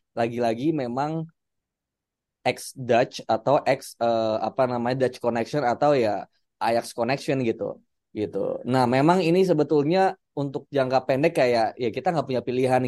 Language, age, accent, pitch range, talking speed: Indonesian, 20-39, native, 120-155 Hz, 140 wpm